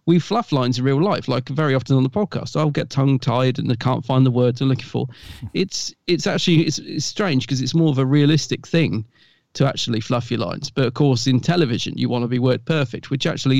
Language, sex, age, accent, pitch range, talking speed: English, male, 40-59, British, 125-155 Hz, 245 wpm